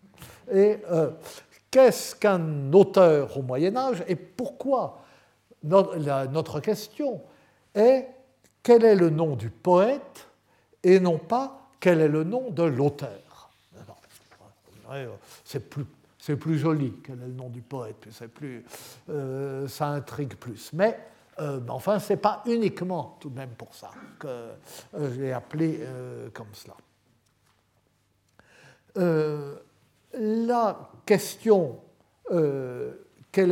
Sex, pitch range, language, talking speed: male, 145-210 Hz, French, 125 wpm